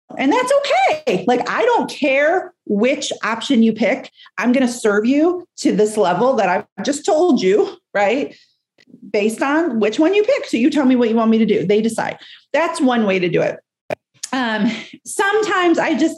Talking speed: 195 wpm